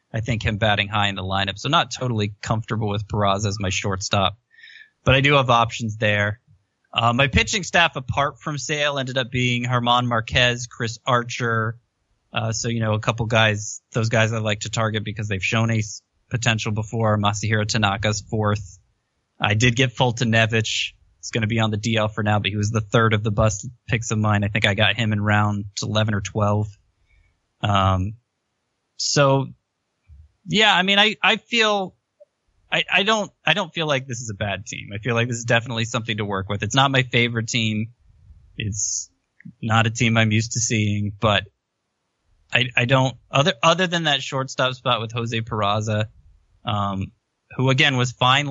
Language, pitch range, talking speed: English, 105-125 Hz, 190 wpm